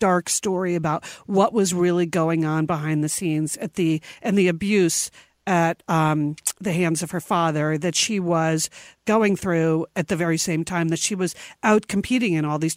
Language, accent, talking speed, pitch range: English, American, 195 wpm, 170-220 Hz